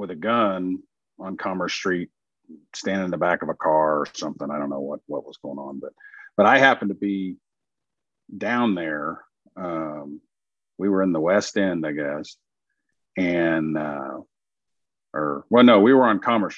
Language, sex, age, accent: English, male, 50-69, American